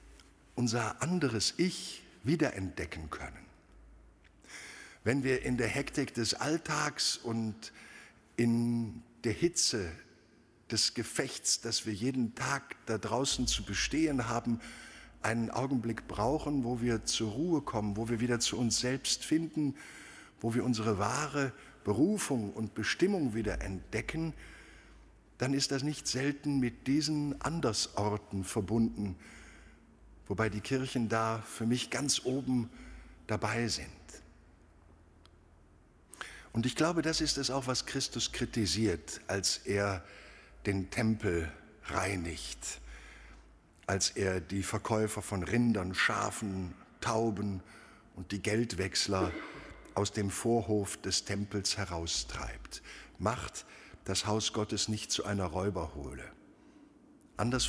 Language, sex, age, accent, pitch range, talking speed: German, male, 50-69, German, 100-130 Hz, 115 wpm